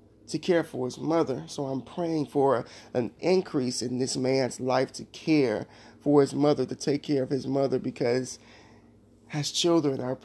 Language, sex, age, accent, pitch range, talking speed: English, male, 30-49, American, 130-155 Hz, 175 wpm